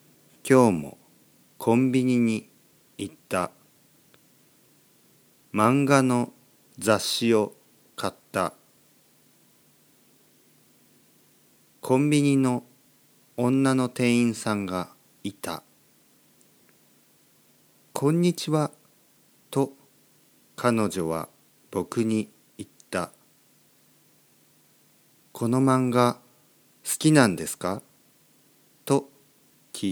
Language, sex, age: Japanese, male, 50-69